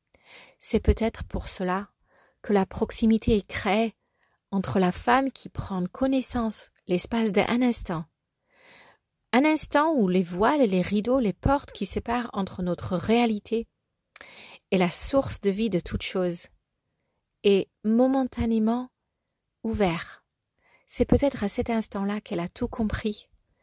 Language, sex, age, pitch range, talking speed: French, female, 40-59, 185-230 Hz, 135 wpm